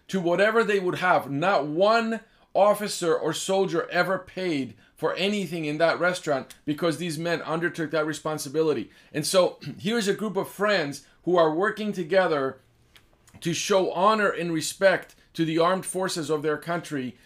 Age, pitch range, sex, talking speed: 40-59, 150-190 Hz, male, 165 wpm